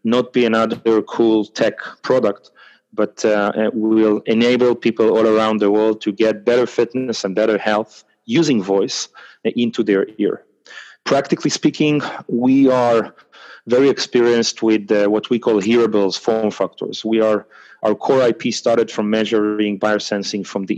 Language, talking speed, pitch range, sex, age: English, 155 wpm, 105-120 Hz, male, 30-49